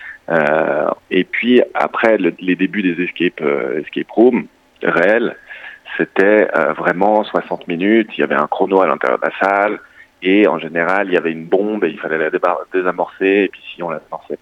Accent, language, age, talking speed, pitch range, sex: French, French, 30-49, 200 wpm, 90-105 Hz, male